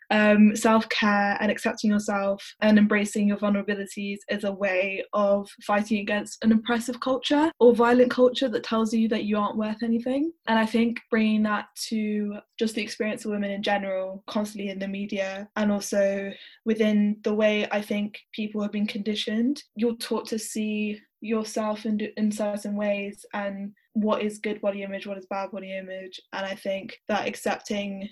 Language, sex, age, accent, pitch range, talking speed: English, female, 10-29, British, 200-225 Hz, 175 wpm